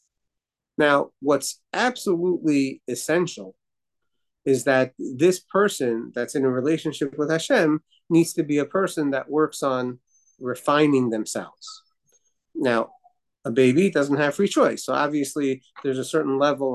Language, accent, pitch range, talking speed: English, American, 125-150 Hz, 135 wpm